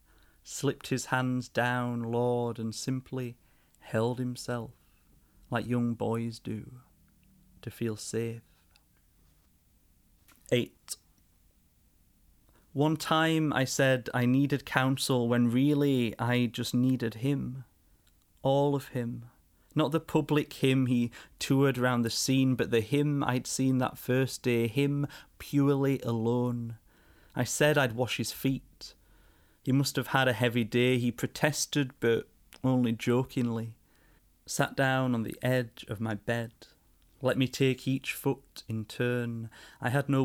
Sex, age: male, 30-49